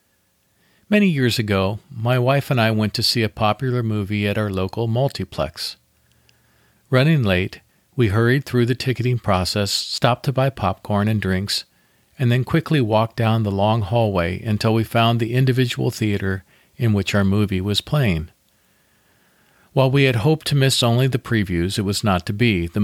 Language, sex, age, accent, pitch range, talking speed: English, male, 50-69, American, 100-130 Hz, 175 wpm